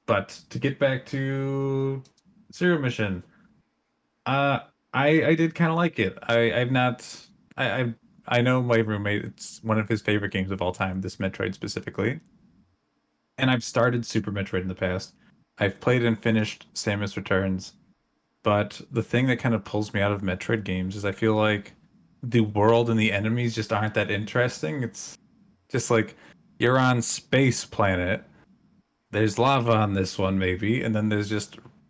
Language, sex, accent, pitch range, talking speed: English, male, American, 100-120 Hz, 170 wpm